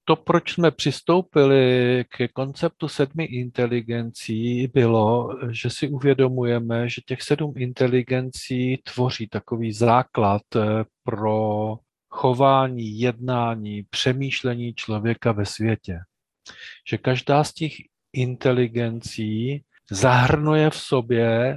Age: 40-59